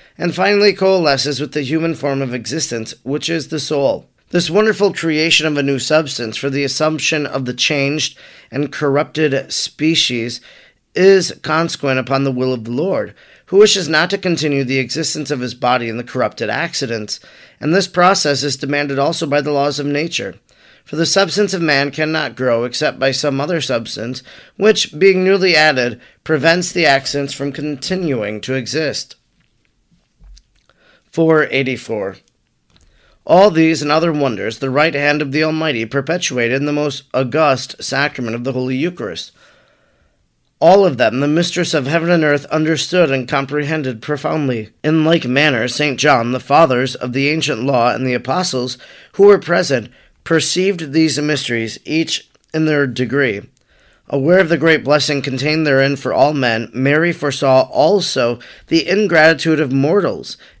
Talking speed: 160 wpm